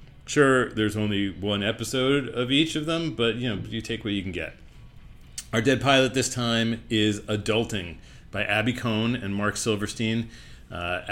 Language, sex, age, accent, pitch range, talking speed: English, male, 40-59, American, 95-120 Hz, 175 wpm